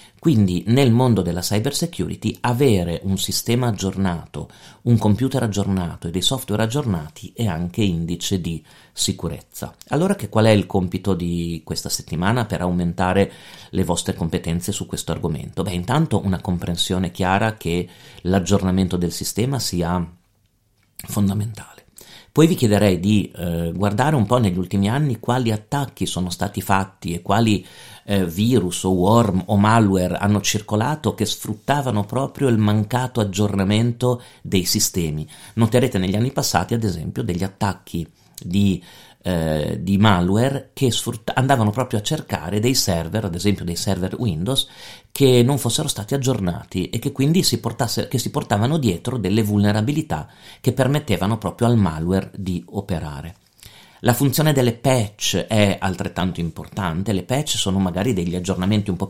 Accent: native